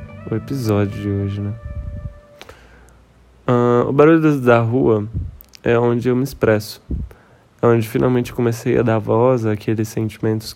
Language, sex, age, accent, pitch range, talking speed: Portuguese, male, 10-29, Brazilian, 110-125 Hz, 135 wpm